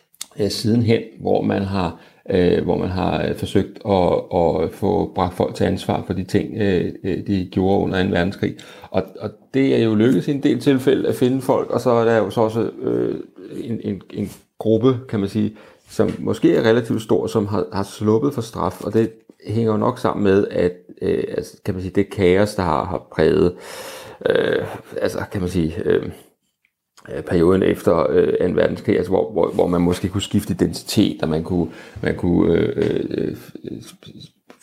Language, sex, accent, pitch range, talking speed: Danish, male, native, 90-115 Hz, 185 wpm